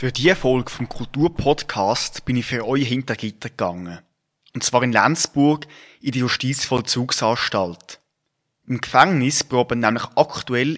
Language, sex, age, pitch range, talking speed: German, male, 20-39, 125-155 Hz, 135 wpm